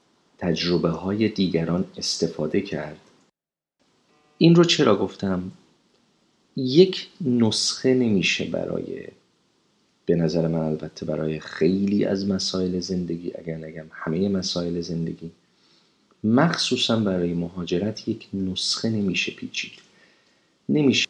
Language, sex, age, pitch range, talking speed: Persian, male, 40-59, 85-100 Hz, 95 wpm